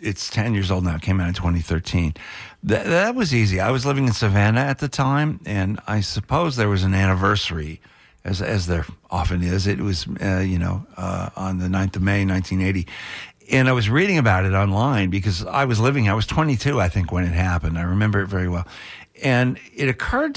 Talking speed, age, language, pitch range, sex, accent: 215 wpm, 60-79, English, 95-130 Hz, male, American